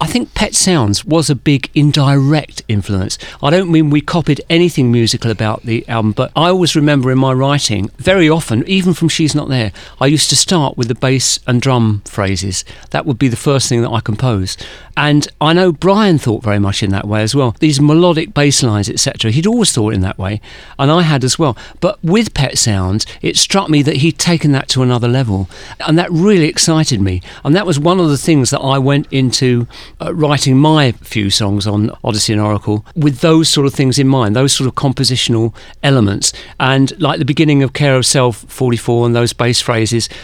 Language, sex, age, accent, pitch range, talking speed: English, male, 40-59, British, 115-155 Hz, 215 wpm